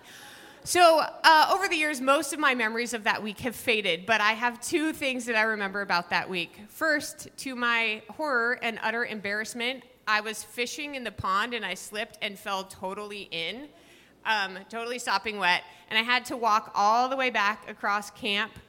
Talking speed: 195 wpm